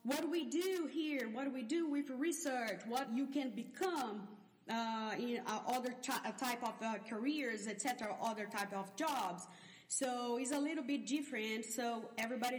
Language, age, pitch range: English, 30-49, 210-250 Hz